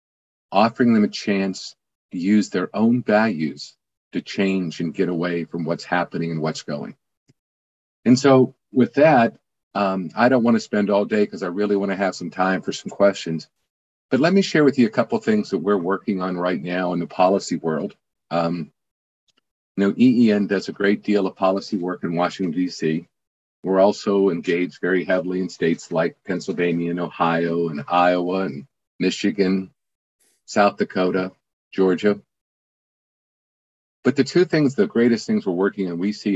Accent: American